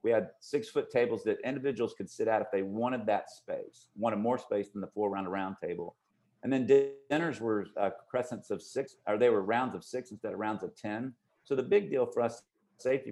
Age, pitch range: 50-69, 105-130 Hz